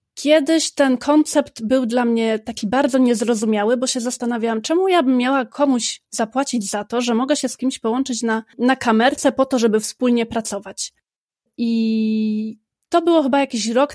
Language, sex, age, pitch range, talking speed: Polish, female, 20-39, 230-270 Hz, 170 wpm